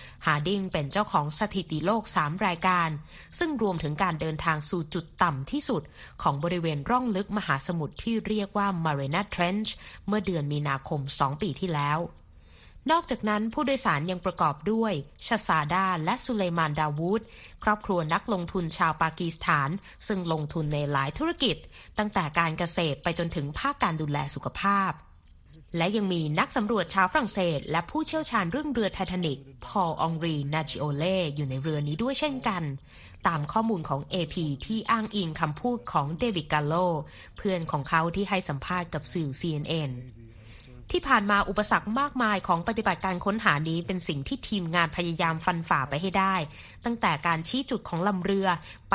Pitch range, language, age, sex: 160-210 Hz, Thai, 20-39, female